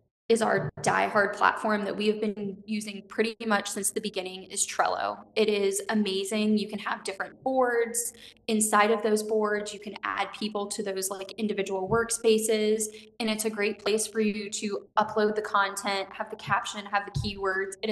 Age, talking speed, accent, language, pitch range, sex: 10-29, 185 wpm, American, English, 195-220 Hz, female